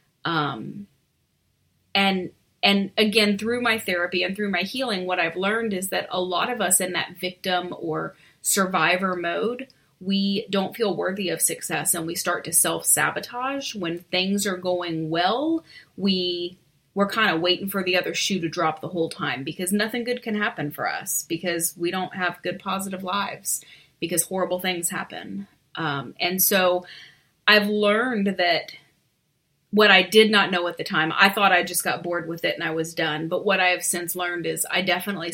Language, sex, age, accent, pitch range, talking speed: English, female, 30-49, American, 165-195 Hz, 185 wpm